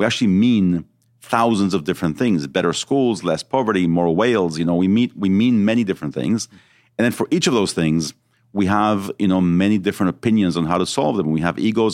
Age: 40-59